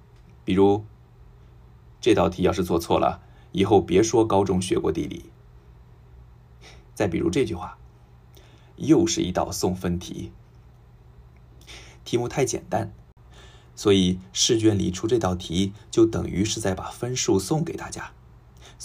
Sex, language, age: male, Japanese, 20-39